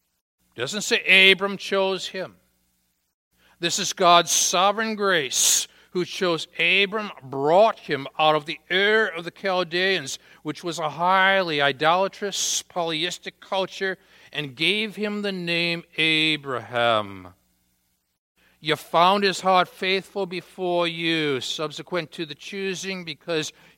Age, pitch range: 60-79, 145-185 Hz